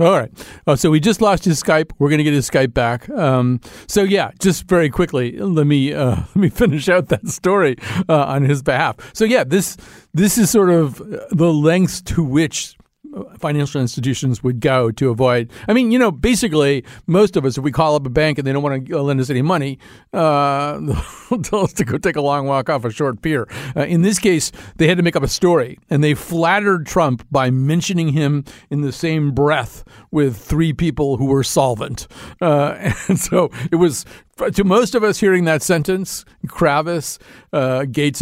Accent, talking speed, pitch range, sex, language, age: American, 205 wpm, 130-170 Hz, male, English, 50-69